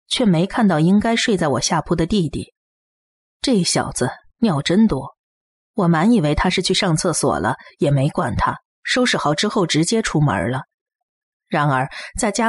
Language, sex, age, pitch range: Chinese, female, 30-49, 145-225 Hz